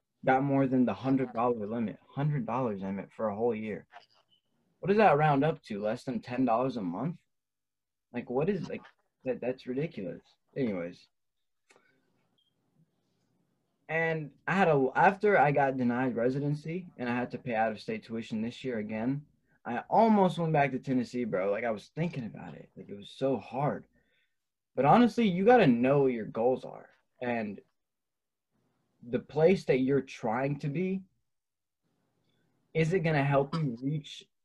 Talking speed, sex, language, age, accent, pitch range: 160 wpm, male, English, 20-39, American, 120-155 Hz